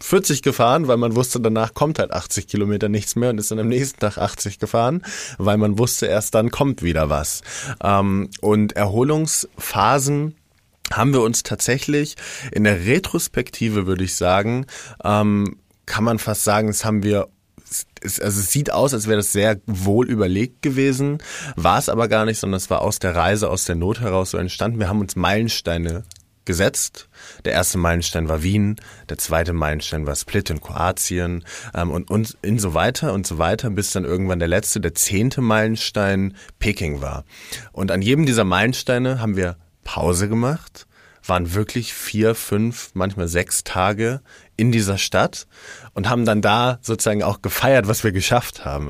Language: German